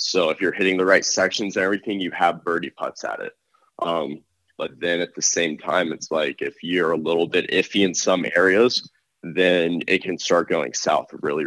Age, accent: 20-39, American